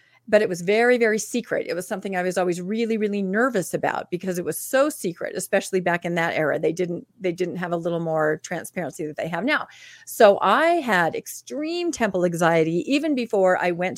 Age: 40-59